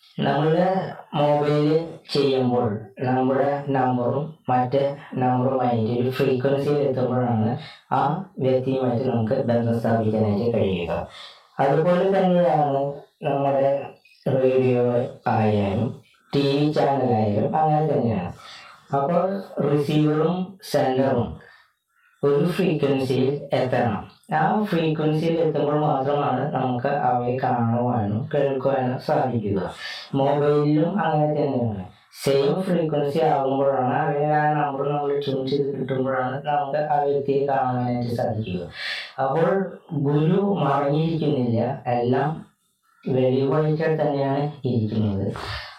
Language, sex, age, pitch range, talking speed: Malayalam, female, 20-39, 125-150 Hz, 85 wpm